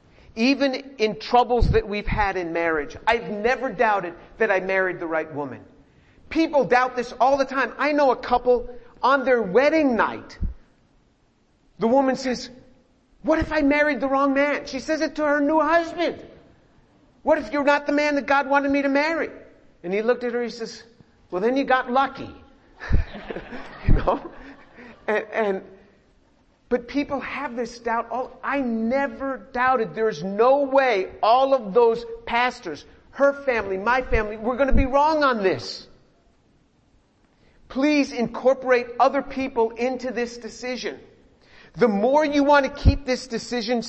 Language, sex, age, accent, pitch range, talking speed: English, male, 50-69, American, 225-270 Hz, 160 wpm